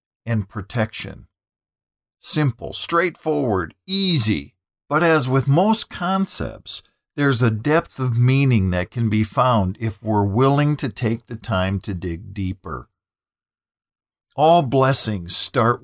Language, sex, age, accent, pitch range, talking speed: English, male, 50-69, American, 95-130 Hz, 120 wpm